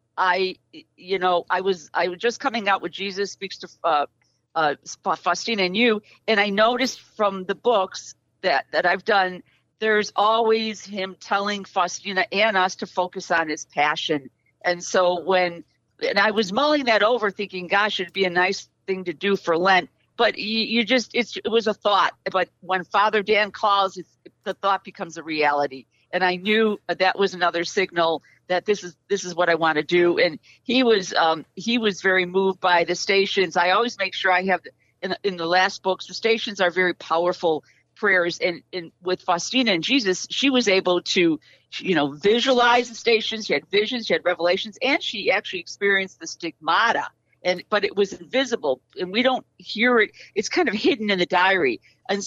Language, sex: English, female